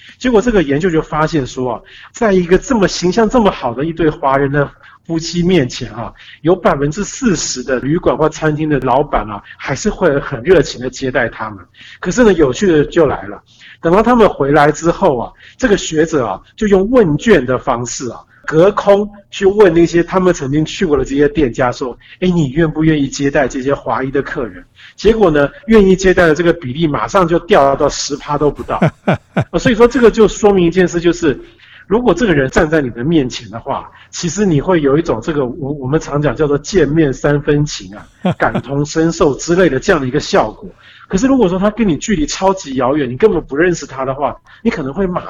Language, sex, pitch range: Chinese, male, 140-185 Hz